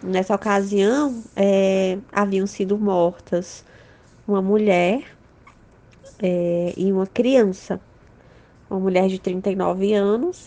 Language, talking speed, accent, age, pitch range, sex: Portuguese, 95 wpm, Brazilian, 20-39, 185-225 Hz, female